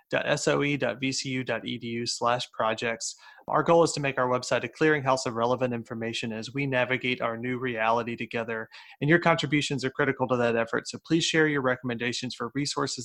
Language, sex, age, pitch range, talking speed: English, male, 30-49, 120-140 Hz, 170 wpm